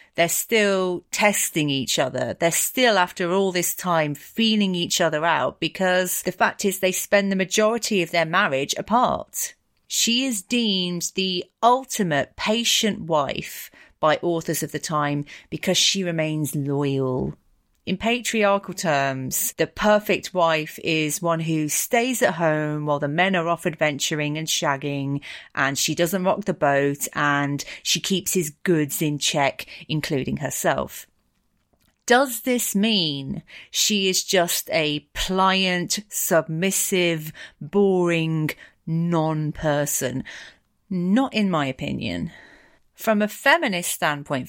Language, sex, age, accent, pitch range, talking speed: English, female, 30-49, British, 155-205 Hz, 130 wpm